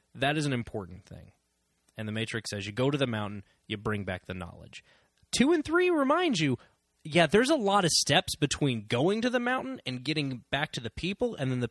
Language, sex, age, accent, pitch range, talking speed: English, male, 20-39, American, 110-155 Hz, 225 wpm